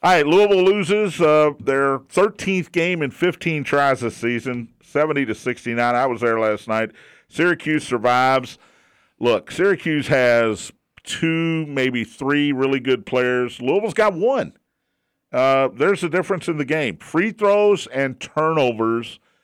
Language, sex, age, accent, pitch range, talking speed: English, male, 50-69, American, 115-150 Hz, 140 wpm